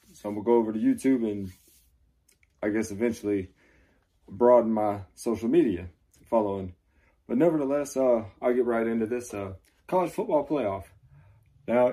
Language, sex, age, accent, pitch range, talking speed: English, male, 20-39, American, 95-115 Hz, 150 wpm